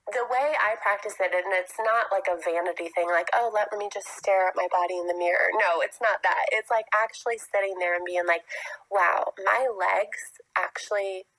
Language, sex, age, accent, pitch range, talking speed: English, female, 20-39, American, 175-210 Hz, 210 wpm